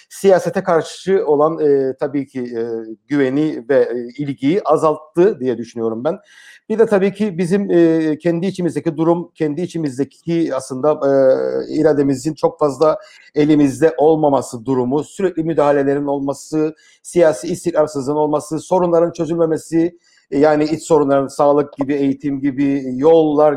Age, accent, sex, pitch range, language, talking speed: 50-69, Turkish, male, 140-180 Hz, German, 125 wpm